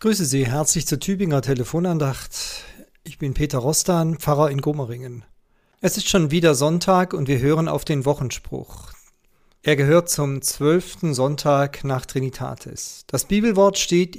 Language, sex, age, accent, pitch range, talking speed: German, male, 40-59, German, 140-175 Hz, 145 wpm